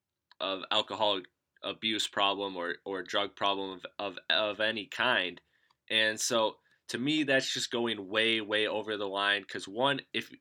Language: English